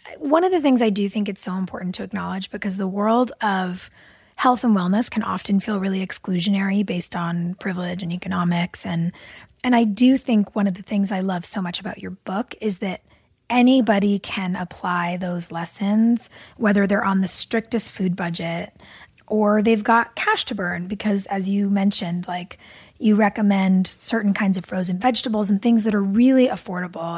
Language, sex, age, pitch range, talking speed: English, female, 20-39, 180-220 Hz, 185 wpm